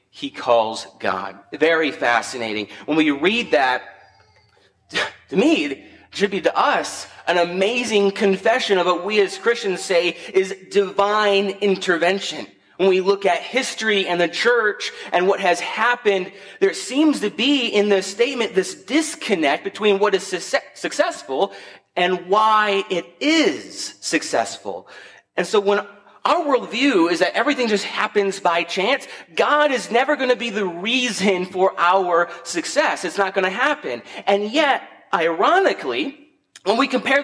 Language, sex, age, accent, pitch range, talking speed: English, male, 30-49, American, 175-250 Hz, 150 wpm